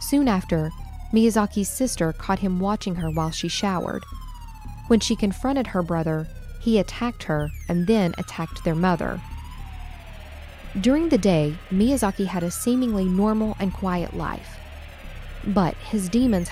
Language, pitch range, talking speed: English, 165-215 Hz, 140 wpm